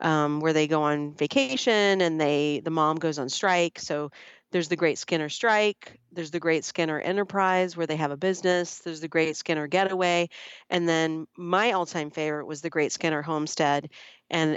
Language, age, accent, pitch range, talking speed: English, 40-59, American, 150-175 Hz, 185 wpm